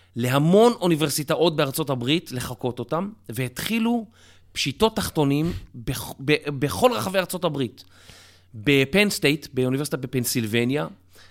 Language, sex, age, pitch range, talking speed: Hebrew, male, 30-49, 125-165 Hz, 95 wpm